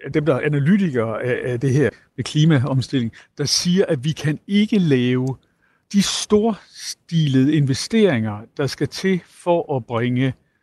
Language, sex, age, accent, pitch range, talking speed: Danish, male, 60-79, native, 130-180 Hz, 140 wpm